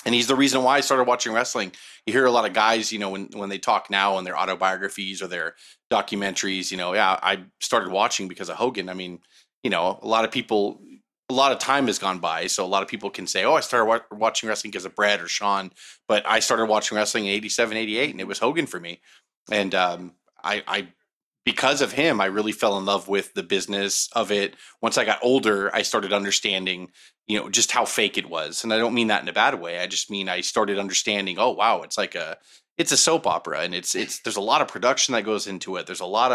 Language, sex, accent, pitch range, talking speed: English, male, American, 95-115 Hz, 255 wpm